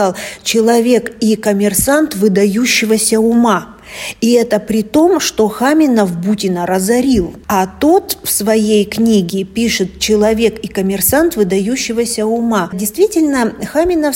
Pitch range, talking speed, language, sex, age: 210-245 Hz, 110 wpm, Russian, female, 40-59